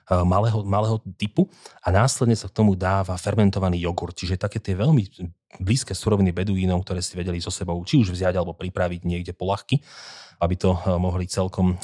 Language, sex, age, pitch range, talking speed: Slovak, male, 30-49, 90-105 Hz, 170 wpm